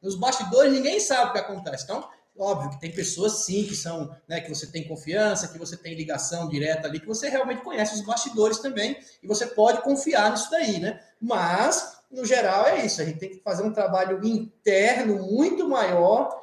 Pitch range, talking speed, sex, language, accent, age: 190-255 Hz, 195 wpm, male, Portuguese, Brazilian, 20-39